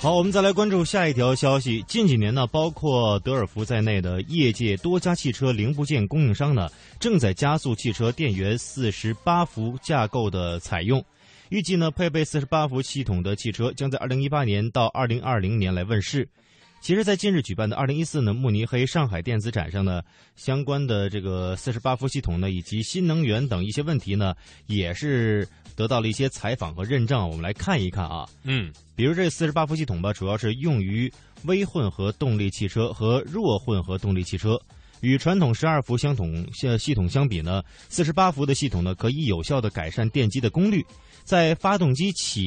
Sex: male